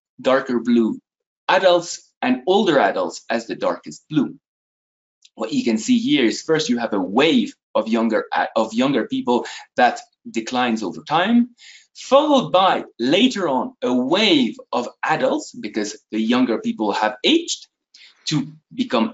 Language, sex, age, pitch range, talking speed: English, male, 30-49, 160-270 Hz, 145 wpm